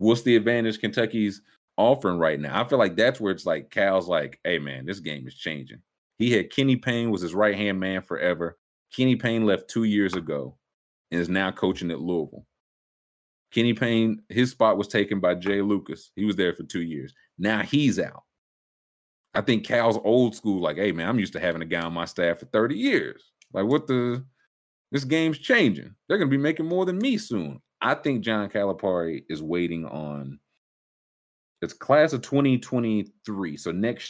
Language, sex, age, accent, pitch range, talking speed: English, male, 30-49, American, 85-115 Hz, 190 wpm